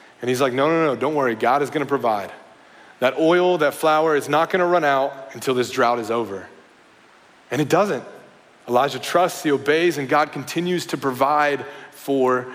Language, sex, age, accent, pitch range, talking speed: English, male, 30-49, American, 130-165 Hz, 185 wpm